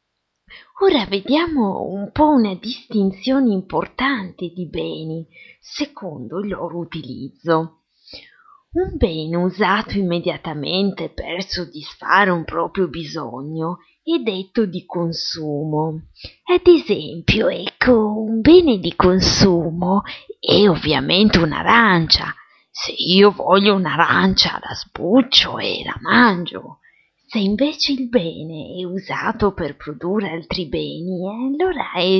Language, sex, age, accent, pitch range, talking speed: Italian, female, 30-49, native, 170-235 Hz, 105 wpm